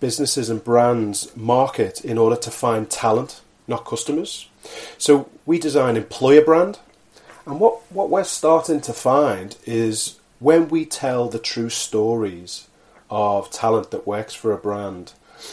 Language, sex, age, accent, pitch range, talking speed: English, male, 30-49, British, 110-150 Hz, 145 wpm